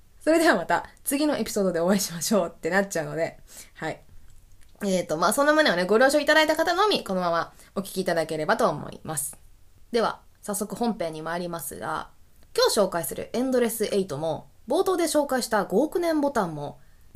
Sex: female